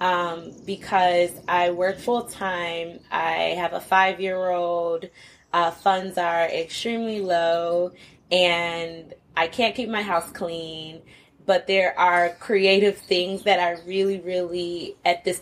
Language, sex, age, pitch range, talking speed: Swahili, female, 20-39, 170-200 Hz, 135 wpm